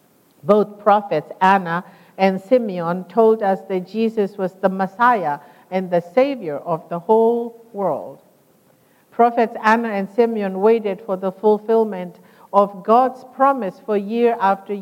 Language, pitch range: English, 175-220 Hz